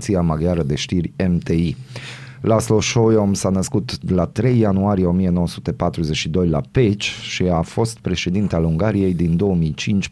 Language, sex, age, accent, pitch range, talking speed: Romanian, male, 30-49, native, 85-110 Hz, 125 wpm